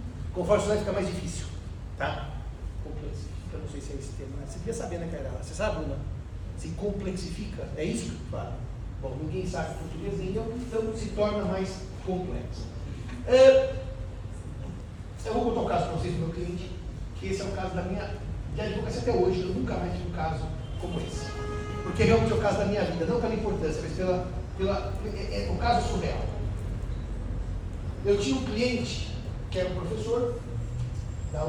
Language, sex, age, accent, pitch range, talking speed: Portuguese, male, 40-59, Brazilian, 95-125 Hz, 195 wpm